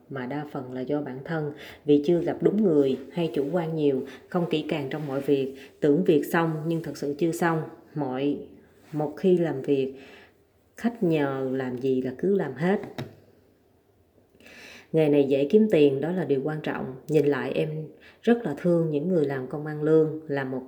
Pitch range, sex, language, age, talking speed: 140-175 Hz, female, Vietnamese, 20-39, 195 wpm